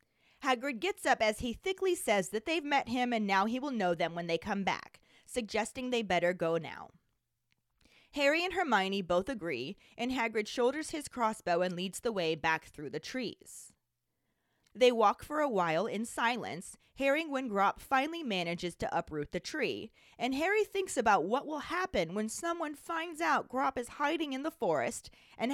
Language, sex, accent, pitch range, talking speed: English, female, American, 190-275 Hz, 185 wpm